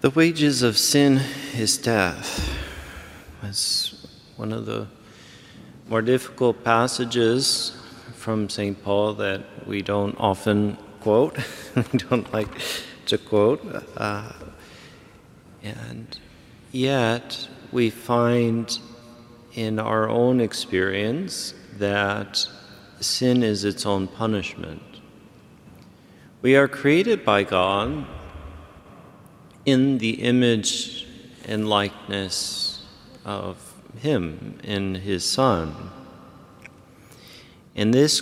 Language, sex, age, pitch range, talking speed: English, male, 40-59, 100-120 Hz, 90 wpm